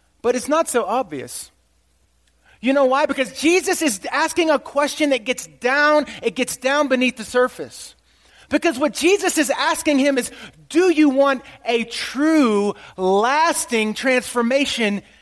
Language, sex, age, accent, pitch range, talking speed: English, male, 30-49, American, 200-290 Hz, 145 wpm